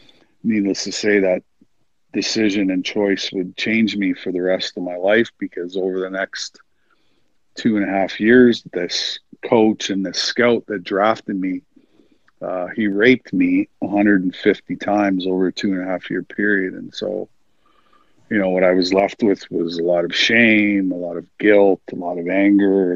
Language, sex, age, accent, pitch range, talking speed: English, male, 50-69, American, 90-100 Hz, 185 wpm